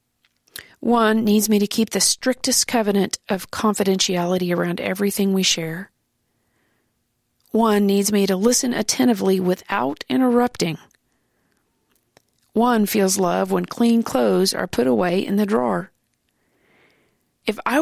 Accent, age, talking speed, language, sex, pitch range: American, 40-59, 120 wpm, English, female, 185-225 Hz